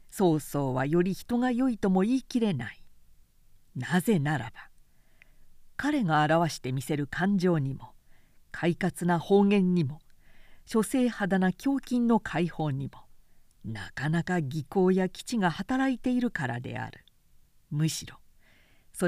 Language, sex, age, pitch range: Japanese, female, 50-69, 150-225 Hz